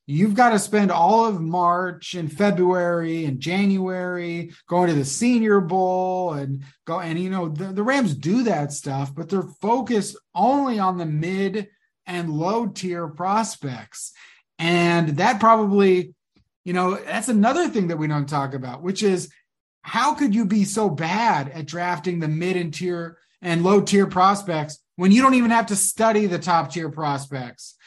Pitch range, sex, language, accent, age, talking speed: 150-200 Hz, male, English, American, 30-49, 170 wpm